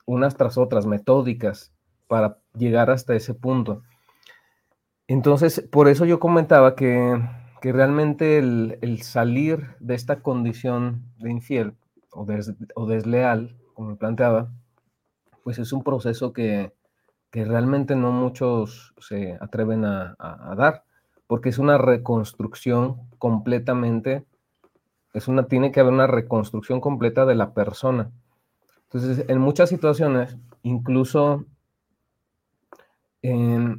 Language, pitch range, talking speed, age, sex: Spanish, 110-135 Hz, 125 wpm, 40-59, male